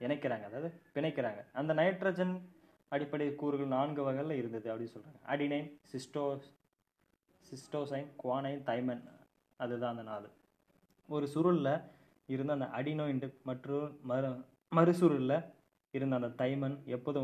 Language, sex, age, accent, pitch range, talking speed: Tamil, male, 20-39, native, 120-145 Hz, 110 wpm